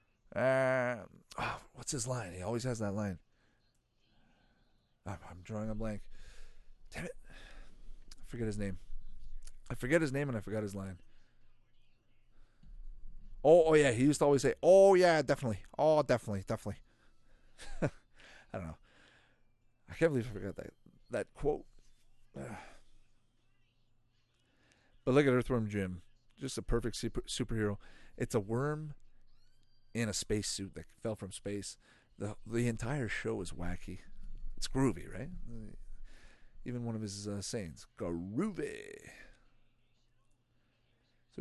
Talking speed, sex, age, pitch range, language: 140 wpm, male, 30-49, 105-125 Hz, English